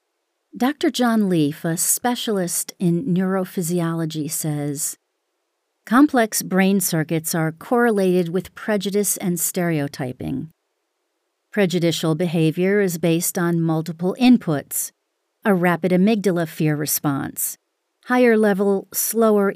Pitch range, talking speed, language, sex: 165-215 Hz, 95 wpm, English, female